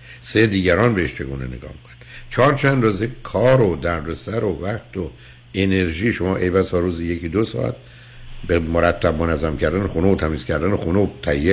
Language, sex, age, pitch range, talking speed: Persian, male, 60-79, 80-120 Hz, 195 wpm